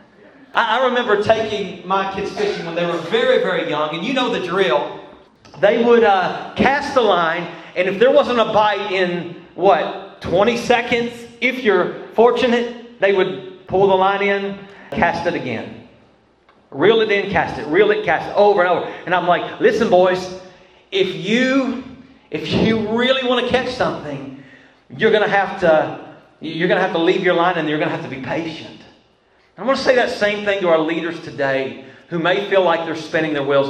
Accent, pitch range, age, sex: American, 155-205 Hz, 40-59, male